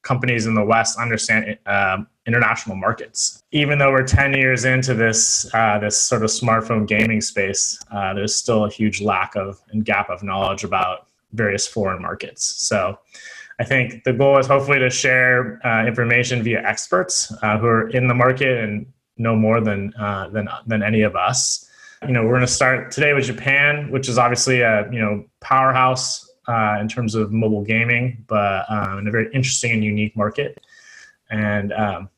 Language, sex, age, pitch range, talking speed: English, male, 20-39, 110-130 Hz, 180 wpm